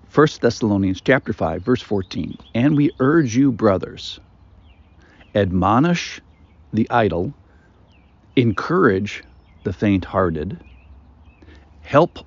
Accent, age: American, 50-69